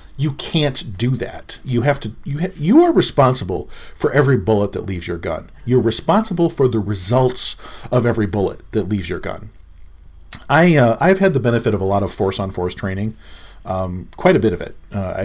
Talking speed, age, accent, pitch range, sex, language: 205 wpm, 40-59, American, 100-135 Hz, male, English